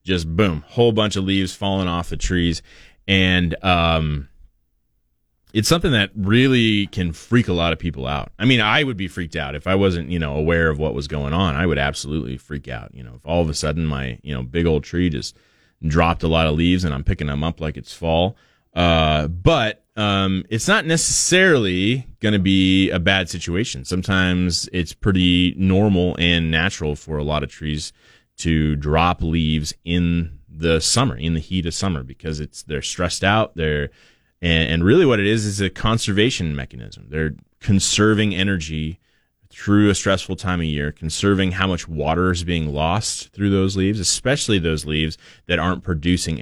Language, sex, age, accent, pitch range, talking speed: English, male, 30-49, American, 75-95 Hz, 190 wpm